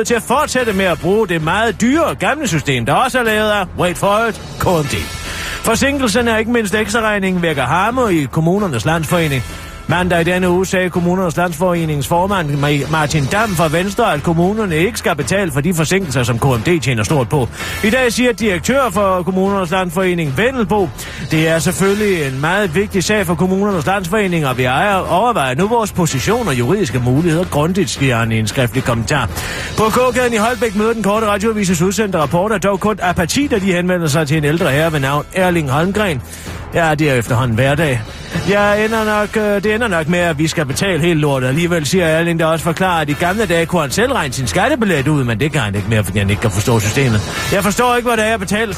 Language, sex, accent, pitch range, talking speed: Danish, male, native, 145-210 Hz, 205 wpm